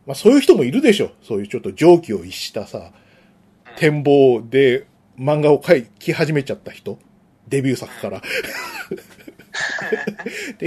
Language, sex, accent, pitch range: Japanese, male, native, 135-220 Hz